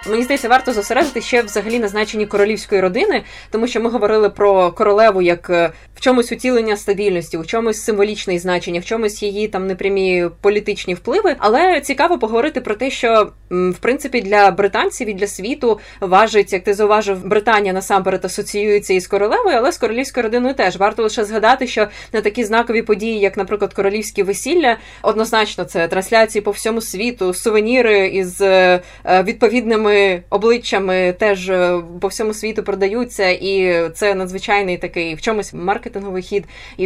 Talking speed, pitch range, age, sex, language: 155 wpm, 190-230 Hz, 20-39, female, Ukrainian